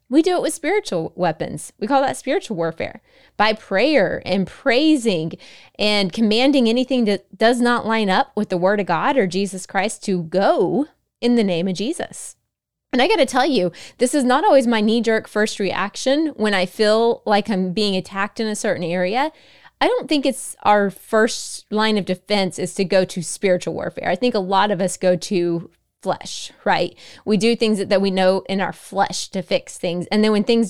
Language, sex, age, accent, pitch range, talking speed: English, female, 20-39, American, 185-240 Hz, 205 wpm